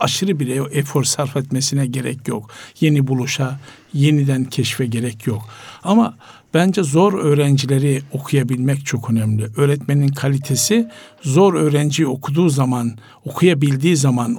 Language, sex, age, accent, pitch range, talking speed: Turkish, male, 60-79, native, 135-165 Hz, 115 wpm